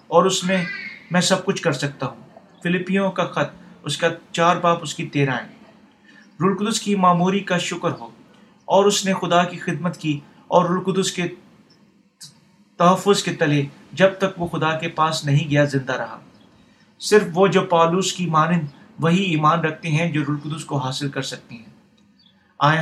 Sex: male